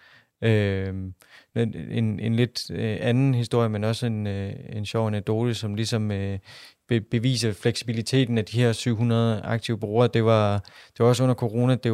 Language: English